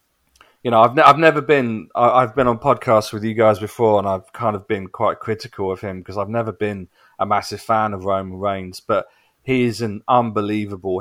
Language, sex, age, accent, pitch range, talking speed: English, male, 30-49, British, 95-115 Hz, 220 wpm